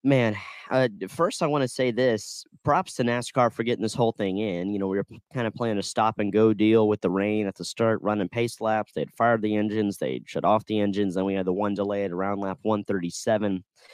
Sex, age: male, 30-49